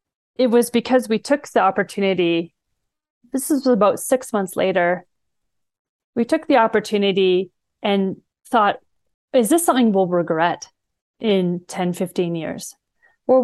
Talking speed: 125 wpm